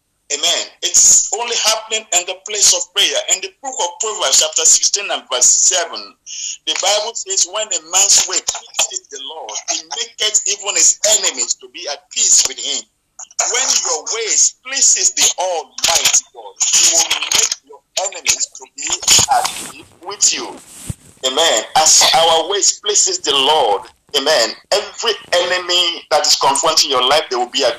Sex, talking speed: male, 165 wpm